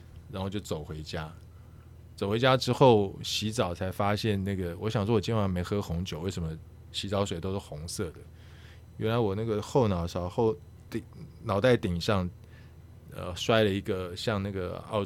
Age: 20-39